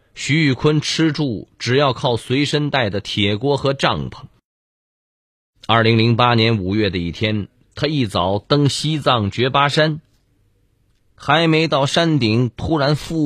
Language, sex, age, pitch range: Chinese, male, 30-49, 105-135 Hz